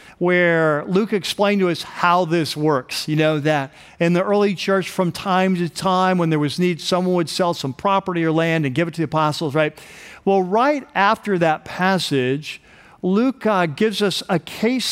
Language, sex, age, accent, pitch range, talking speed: English, male, 50-69, American, 160-205 Hz, 195 wpm